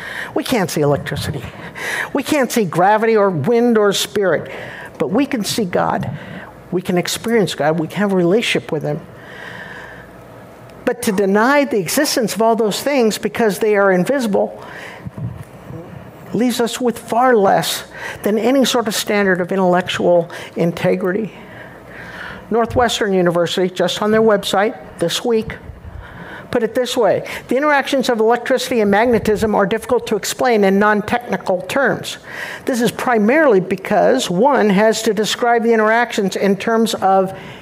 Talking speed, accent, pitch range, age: 145 wpm, American, 190-235 Hz, 60-79